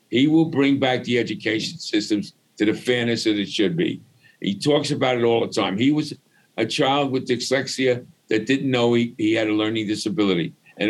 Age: 60-79